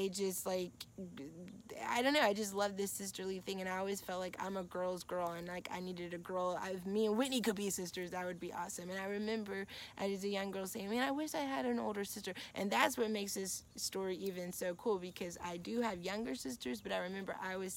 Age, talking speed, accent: 20-39, 245 wpm, American